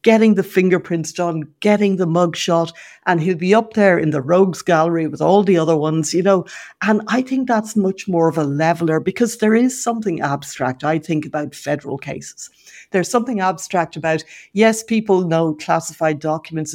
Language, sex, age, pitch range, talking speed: English, female, 60-79, 160-200 Hz, 185 wpm